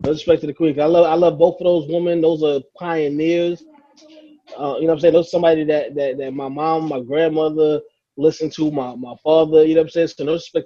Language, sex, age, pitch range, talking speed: English, male, 20-39, 140-160 Hz, 255 wpm